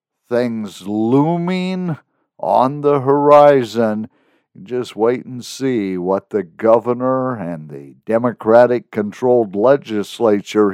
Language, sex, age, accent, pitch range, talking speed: English, male, 60-79, American, 110-140 Hz, 90 wpm